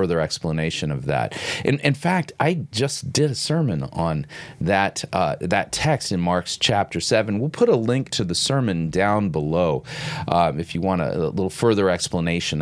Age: 30-49